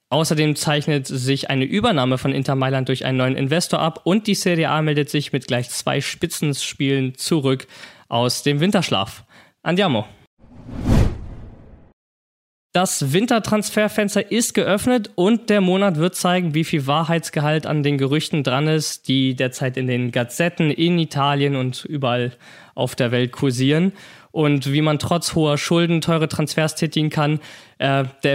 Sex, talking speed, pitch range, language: male, 150 wpm, 135-170 Hz, German